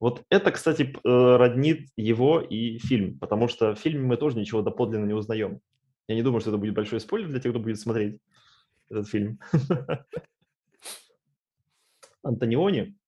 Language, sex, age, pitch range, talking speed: Russian, male, 20-39, 105-135 Hz, 150 wpm